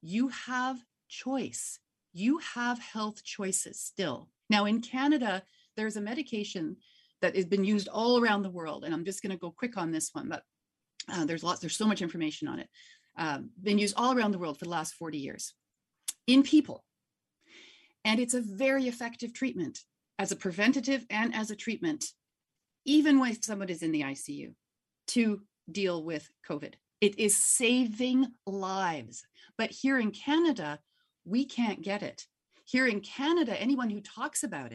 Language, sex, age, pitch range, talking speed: English, female, 40-59, 195-265 Hz, 170 wpm